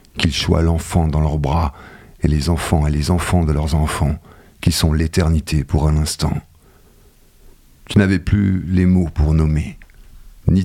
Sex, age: male, 50-69